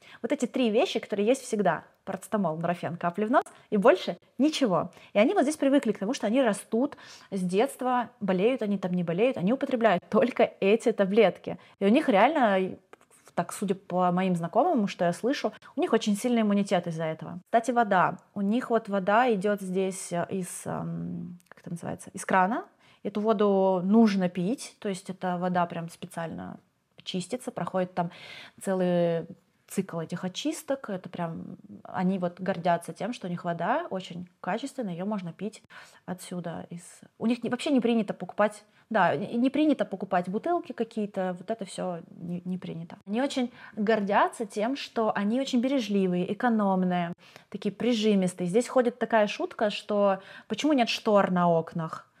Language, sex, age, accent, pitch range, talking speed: Russian, female, 20-39, native, 180-235 Hz, 165 wpm